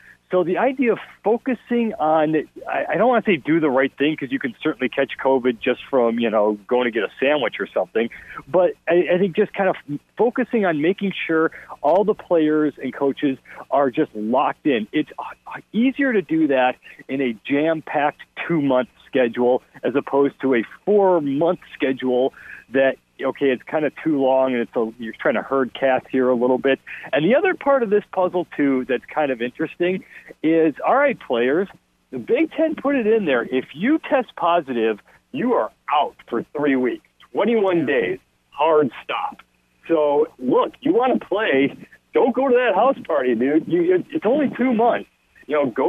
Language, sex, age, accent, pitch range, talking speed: English, male, 40-59, American, 135-210 Hz, 190 wpm